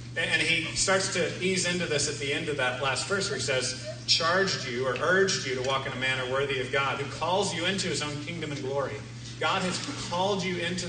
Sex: male